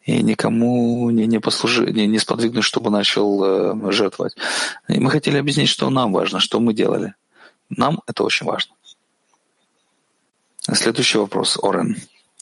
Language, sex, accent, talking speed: Russian, male, native, 135 wpm